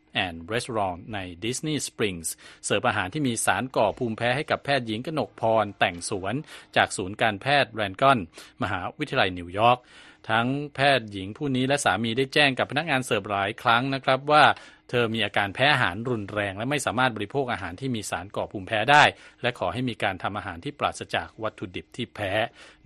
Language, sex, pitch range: Thai, male, 105-140 Hz